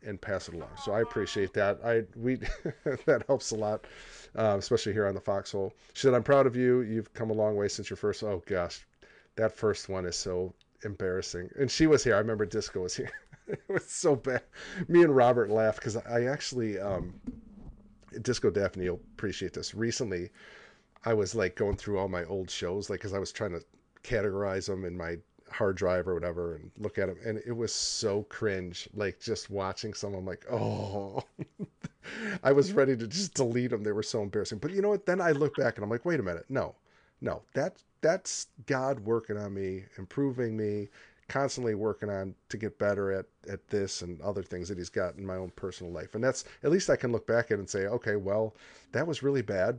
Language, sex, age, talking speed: English, male, 40-59, 215 wpm